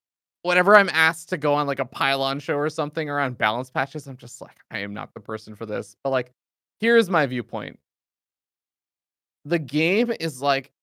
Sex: male